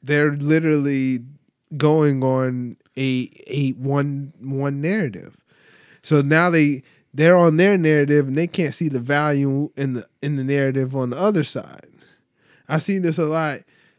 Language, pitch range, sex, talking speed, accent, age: English, 135-175 Hz, male, 155 wpm, American, 20-39